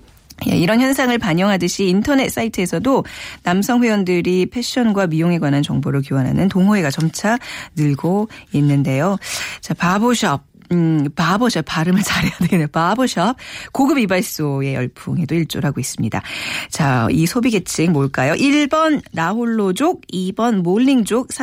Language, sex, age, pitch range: Korean, female, 40-59, 160-235 Hz